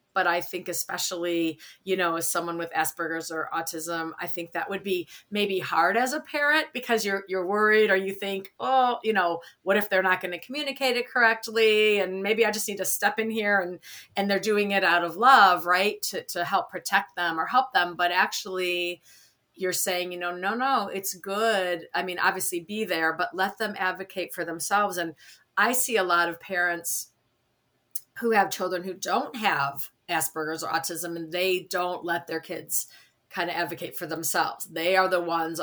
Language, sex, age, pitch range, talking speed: English, female, 40-59, 165-200 Hz, 200 wpm